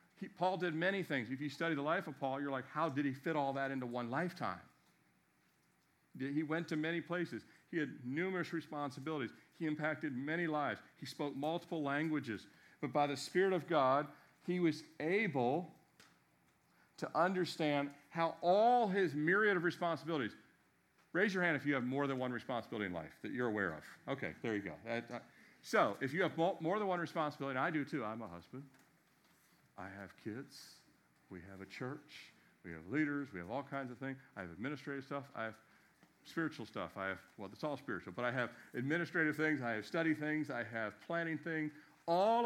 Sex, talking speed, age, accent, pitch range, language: male, 190 wpm, 50-69, American, 130-165 Hz, English